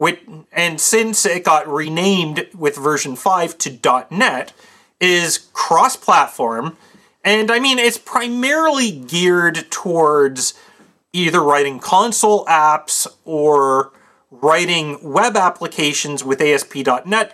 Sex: male